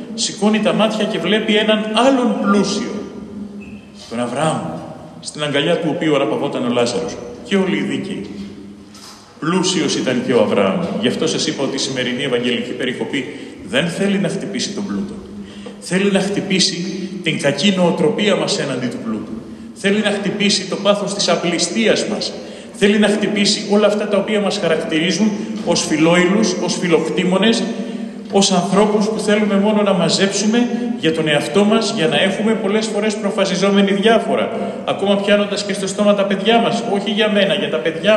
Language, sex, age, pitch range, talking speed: Greek, male, 40-59, 180-215 Hz, 160 wpm